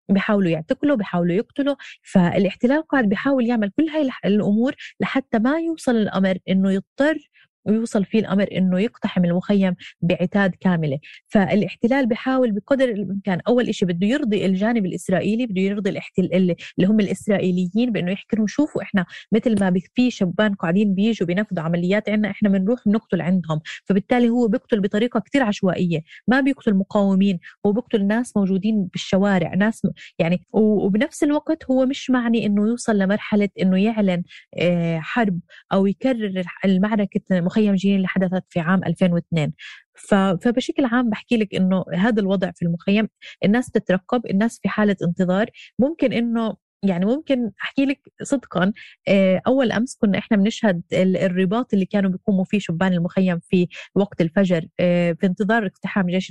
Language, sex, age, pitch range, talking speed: Arabic, female, 20-39, 185-225 Hz, 145 wpm